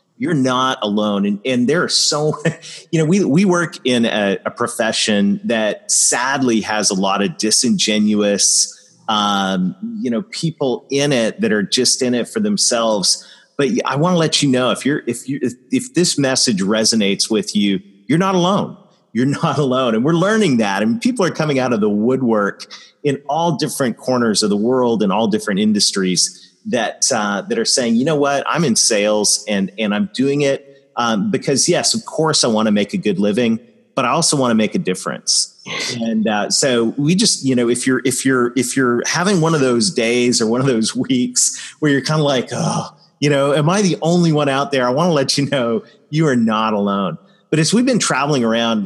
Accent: American